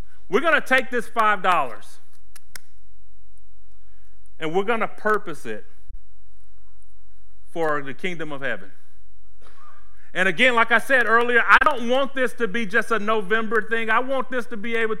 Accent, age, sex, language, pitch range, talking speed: American, 40-59, male, English, 145-230 Hz, 155 wpm